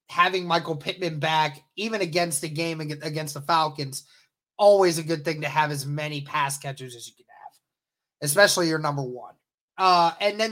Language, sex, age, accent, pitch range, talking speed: English, male, 20-39, American, 170-210 Hz, 185 wpm